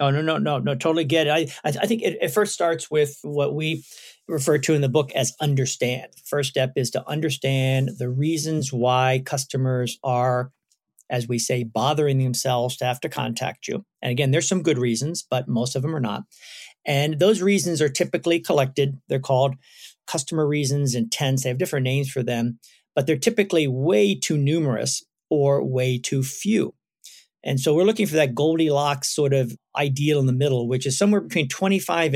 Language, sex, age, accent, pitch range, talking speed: English, male, 50-69, American, 130-155 Hz, 190 wpm